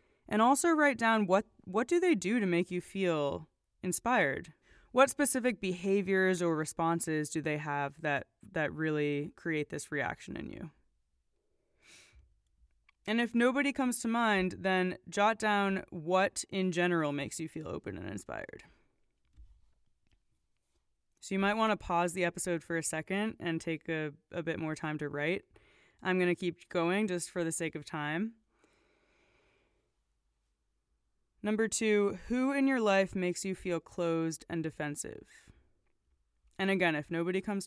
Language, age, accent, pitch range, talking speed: English, 20-39, American, 155-200 Hz, 155 wpm